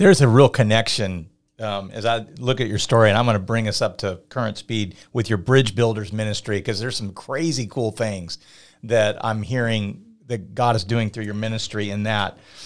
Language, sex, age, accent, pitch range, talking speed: English, male, 40-59, American, 110-150 Hz, 210 wpm